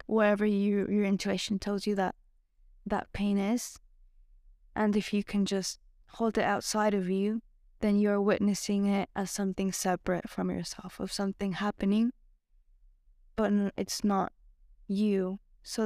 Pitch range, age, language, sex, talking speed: 185-220 Hz, 10-29, English, female, 135 wpm